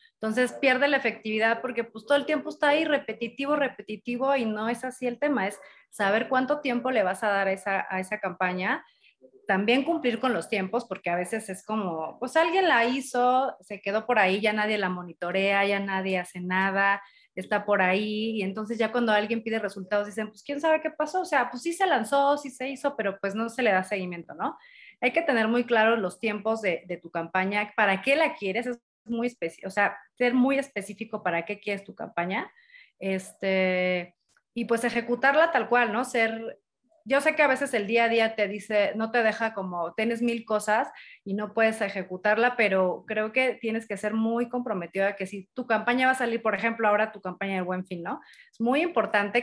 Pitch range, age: 200-250 Hz, 30-49